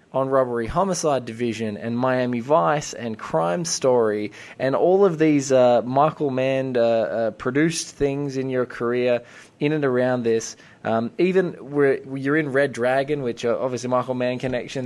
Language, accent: English, Australian